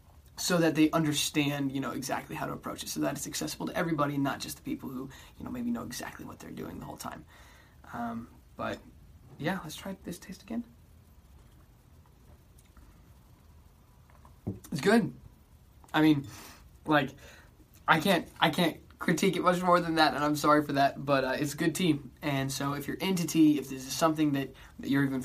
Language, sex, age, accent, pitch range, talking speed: English, male, 20-39, American, 130-165 Hz, 190 wpm